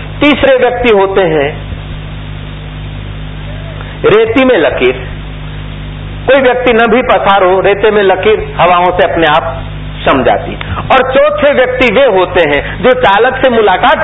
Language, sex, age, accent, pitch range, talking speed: Hindi, male, 50-69, native, 175-260 Hz, 135 wpm